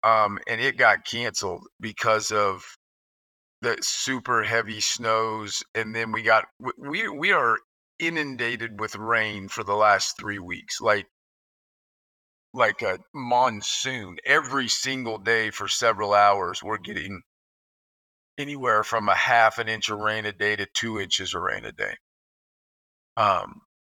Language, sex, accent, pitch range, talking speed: English, male, American, 105-125 Hz, 140 wpm